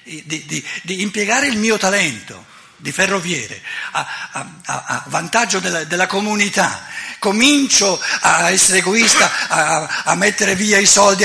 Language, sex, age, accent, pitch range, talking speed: Italian, male, 60-79, native, 130-195 Hz, 135 wpm